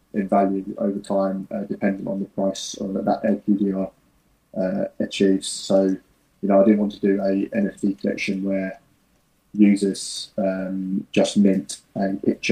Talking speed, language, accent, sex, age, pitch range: 155 wpm, English, British, male, 20-39, 100-115 Hz